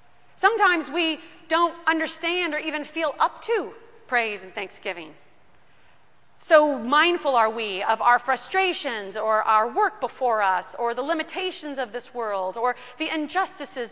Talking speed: 140 wpm